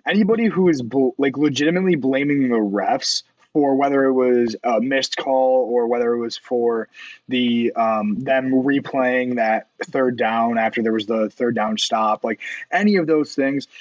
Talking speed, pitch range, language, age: 170 wpm, 120-155 Hz, English, 20-39